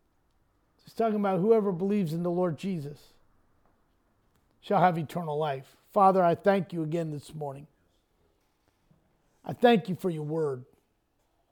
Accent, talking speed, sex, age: American, 135 wpm, male, 50-69